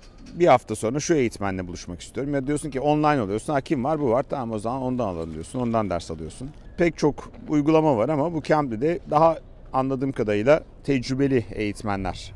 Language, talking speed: Turkish, 185 wpm